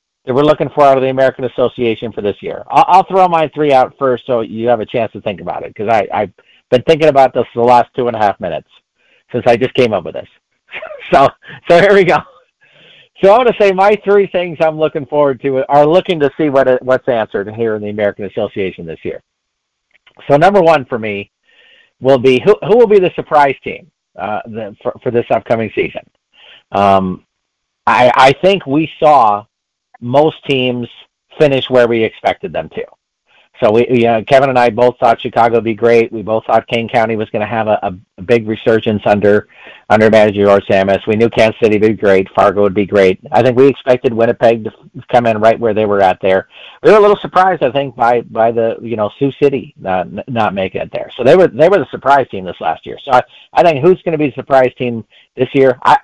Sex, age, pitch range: male, 50-69, 110-145 Hz